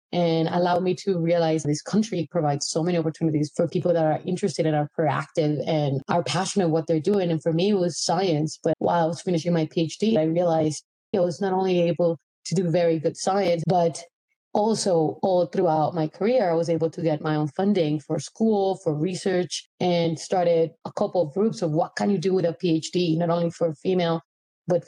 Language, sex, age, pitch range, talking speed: English, female, 30-49, 160-180 Hz, 210 wpm